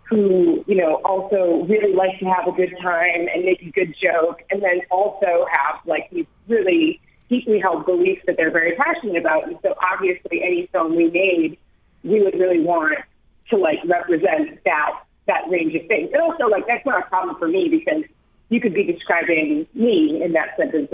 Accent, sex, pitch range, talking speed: American, female, 175-225 Hz, 195 wpm